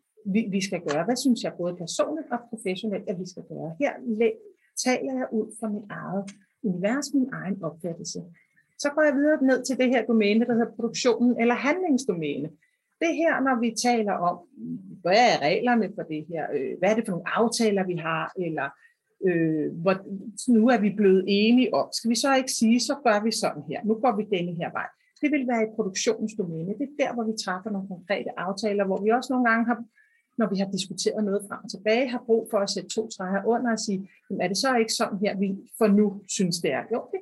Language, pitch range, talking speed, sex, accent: Danish, 195-245 Hz, 220 wpm, female, native